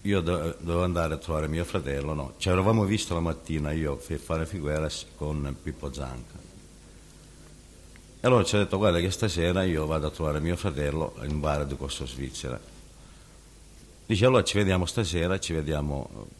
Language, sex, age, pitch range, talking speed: Italian, male, 60-79, 75-95 Hz, 170 wpm